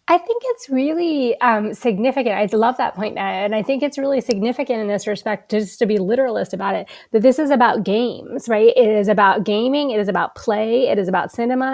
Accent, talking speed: American, 230 wpm